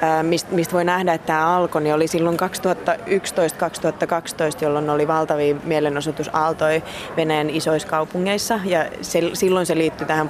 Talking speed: 140 wpm